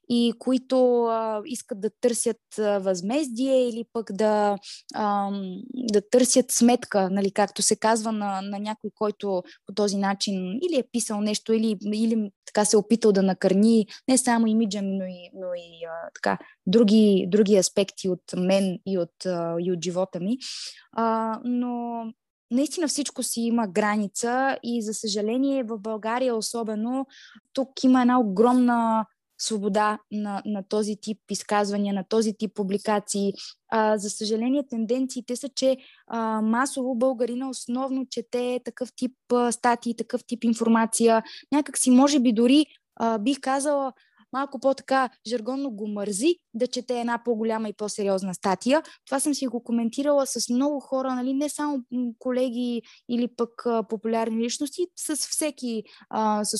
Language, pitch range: Bulgarian, 210-255 Hz